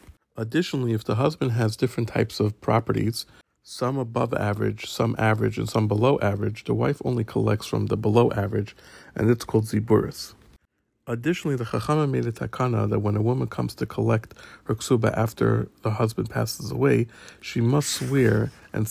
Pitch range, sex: 110-130 Hz, male